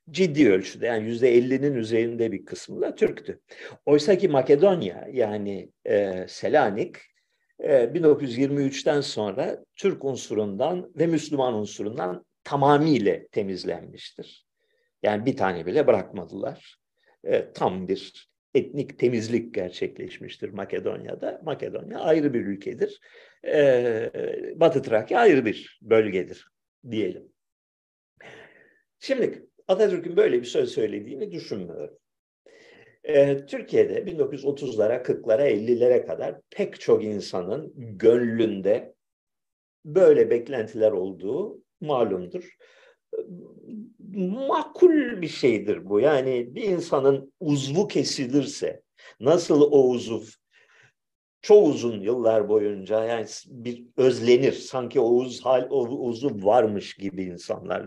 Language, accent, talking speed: Turkish, native, 100 wpm